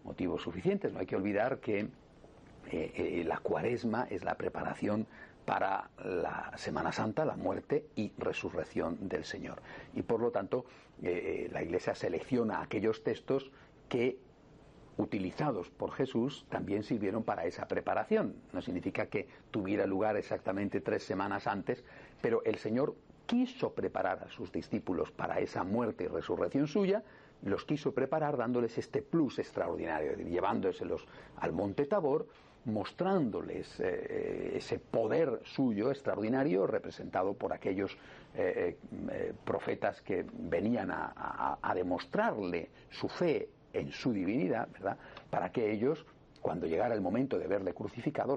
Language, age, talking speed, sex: Spanish, 50-69, 135 wpm, male